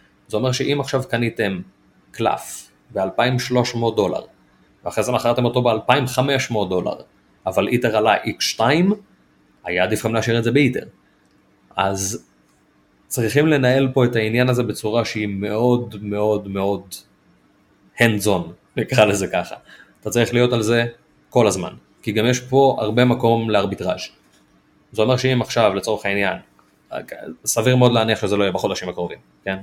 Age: 30-49